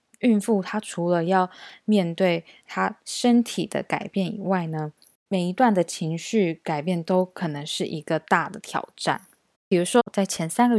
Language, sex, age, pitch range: Chinese, female, 20-39, 165-205 Hz